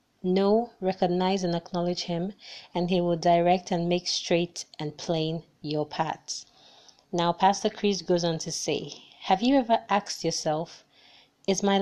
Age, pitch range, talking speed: 30-49, 165-195 Hz, 150 wpm